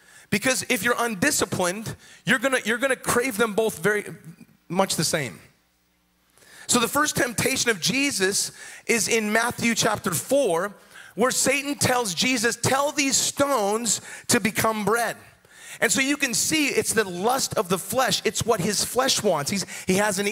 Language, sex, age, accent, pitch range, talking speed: English, male, 30-49, American, 185-240 Hz, 165 wpm